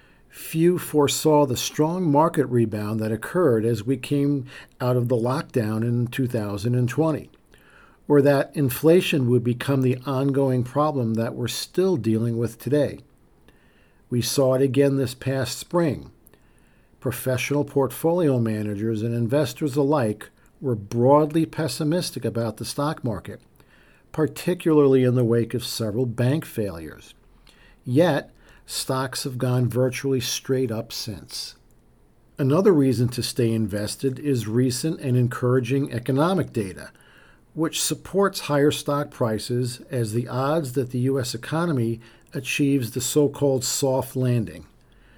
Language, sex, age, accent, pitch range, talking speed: English, male, 50-69, American, 120-145 Hz, 125 wpm